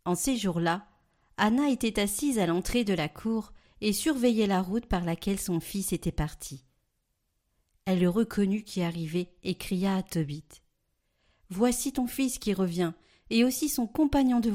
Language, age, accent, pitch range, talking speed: French, 40-59, French, 175-230 Hz, 170 wpm